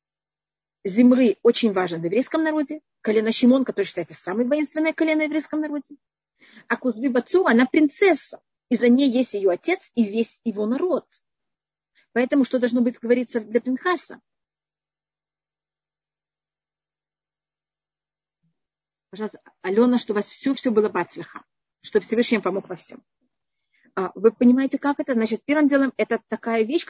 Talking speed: 135 wpm